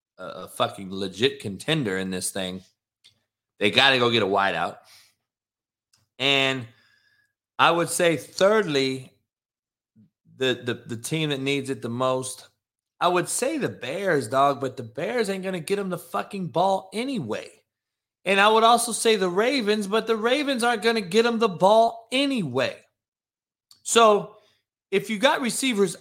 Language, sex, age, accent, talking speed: English, male, 30-49, American, 160 wpm